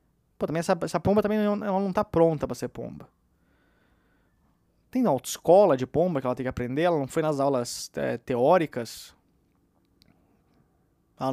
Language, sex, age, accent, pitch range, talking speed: Portuguese, male, 20-39, Brazilian, 130-170 Hz, 160 wpm